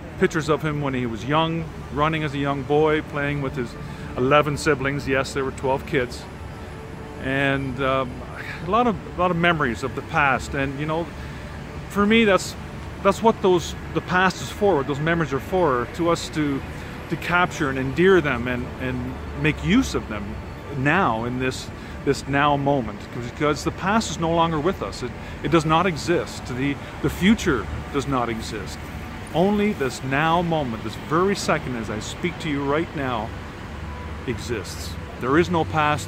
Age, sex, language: 40-59, male, English